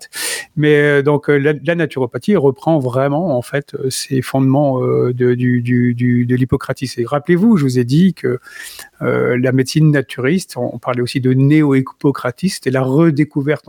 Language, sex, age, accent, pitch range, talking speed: French, male, 40-59, French, 130-150 Hz, 155 wpm